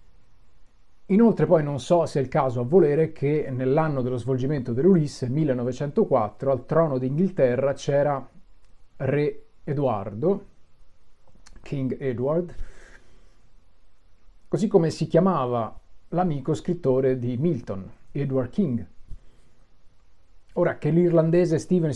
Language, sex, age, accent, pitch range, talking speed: Italian, male, 40-59, native, 105-150 Hz, 105 wpm